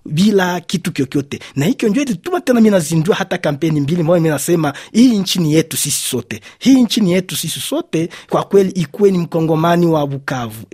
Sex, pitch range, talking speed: male, 145-190 Hz, 190 wpm